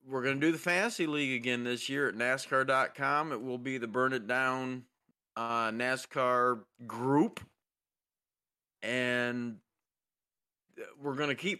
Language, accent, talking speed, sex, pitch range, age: English, American, 140 wpm, male, 120-145 Hz, 40-59